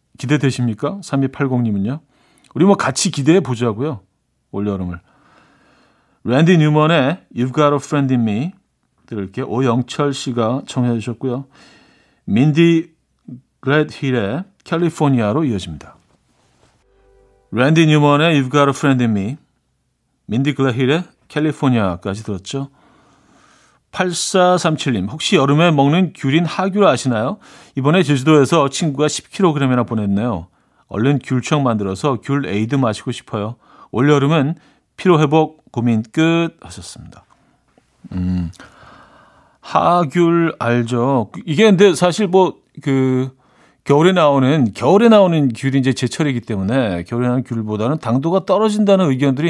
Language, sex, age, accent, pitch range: Korean, male, 40-59, native, 120-160 Hz